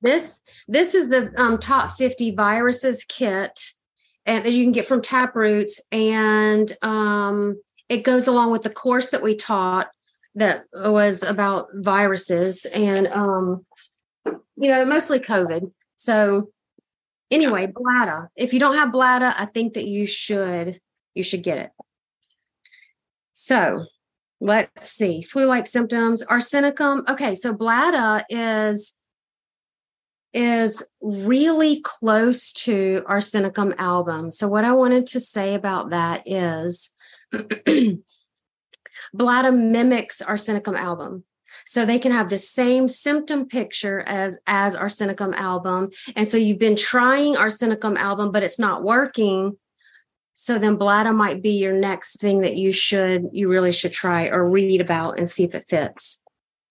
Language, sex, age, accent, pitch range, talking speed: English, female, 30-49, American, 195-245 Hz, 135 wpm